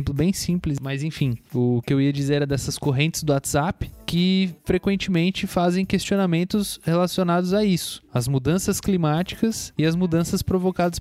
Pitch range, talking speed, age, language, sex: 140-180 Hz, 155 wpm, 20-39, Portuguese, male